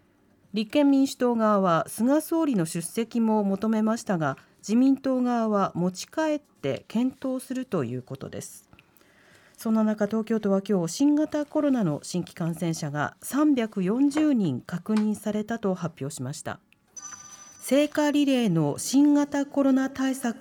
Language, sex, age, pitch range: Japanese, female, 40-59, 190-275 Hz